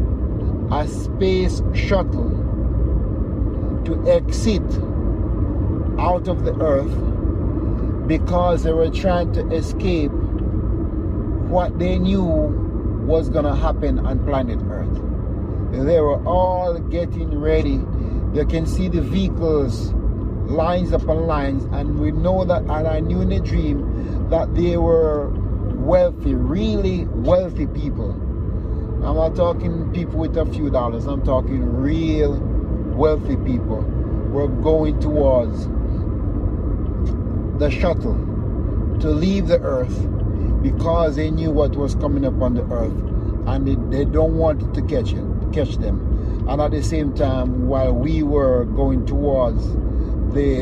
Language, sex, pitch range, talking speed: English, male, 90-105 Hz, 125 wpm